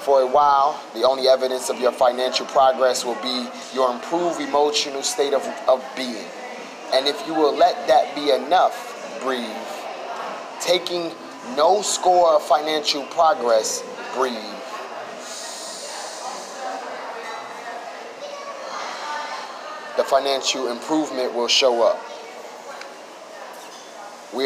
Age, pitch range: 30-49, 130-165 Hz